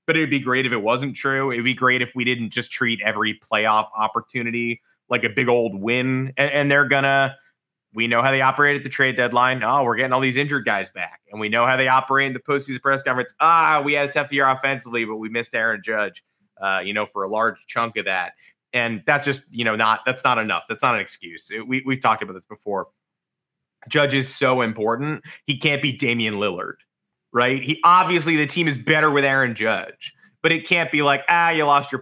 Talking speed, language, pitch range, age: 230 wpm, English, 120-150 Hz, 20-39